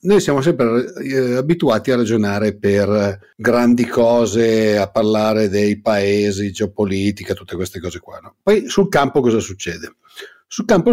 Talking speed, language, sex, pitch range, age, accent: 145 wpm, Italian, male, 105-145 Hz, 50-69, native